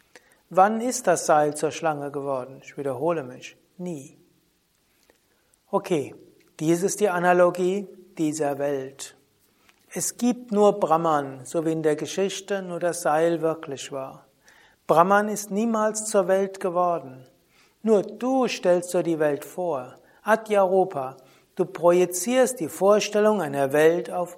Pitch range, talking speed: 150-190 Hz, 135 wpm